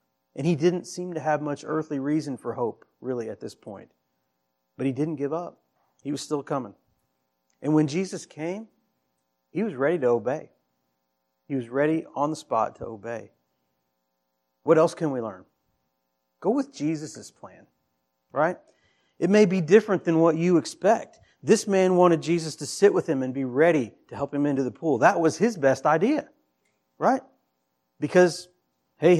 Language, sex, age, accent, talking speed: English, male, 40-59, American, 175 wpm